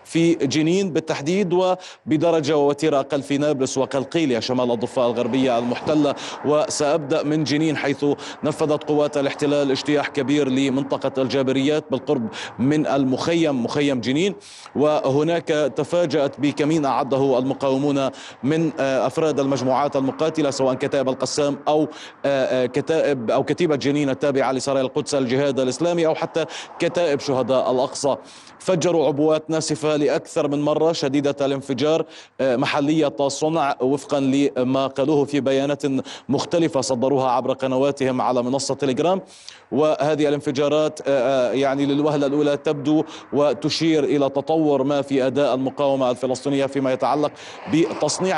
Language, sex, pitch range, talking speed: Arabic, male, 135-155 Hz, 120 wpm